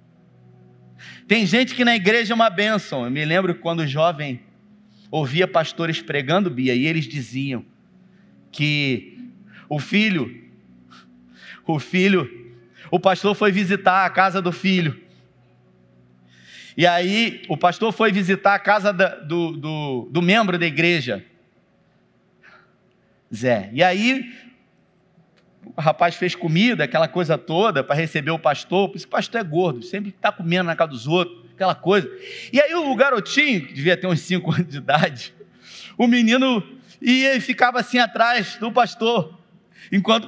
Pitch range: 160-245 Hz